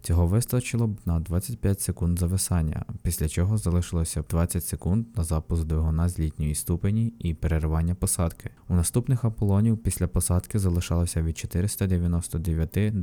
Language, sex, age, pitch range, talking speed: Ukrainian, male, 20-39, 80-100 Hz, 140 wpm